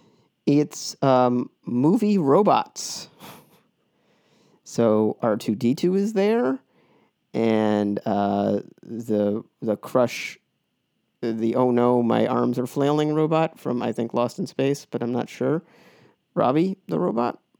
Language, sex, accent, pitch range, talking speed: English, male, American, 105-135 Hz, 125 wpm